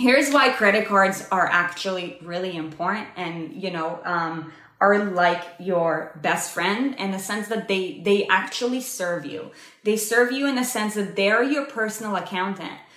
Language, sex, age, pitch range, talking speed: English, female, 20-39, 185-230 Hz, 170 wpm